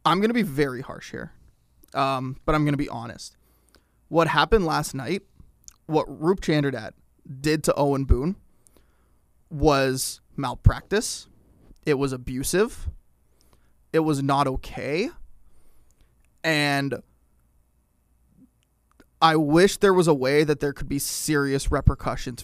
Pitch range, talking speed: 120-165 Hz, 125 wpm